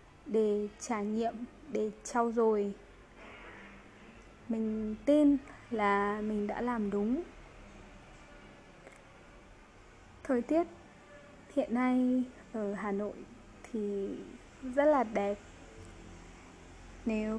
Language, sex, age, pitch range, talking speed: Vietnamese, female, 20-39, 205-255 Hz, 85 wpm